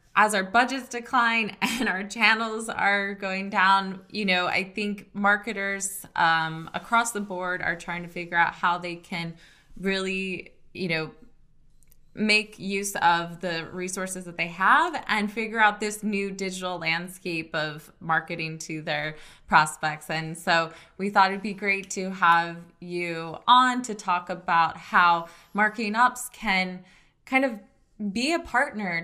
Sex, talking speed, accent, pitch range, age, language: female, 150 wpm, American, 170-205 Hz, 20-39, English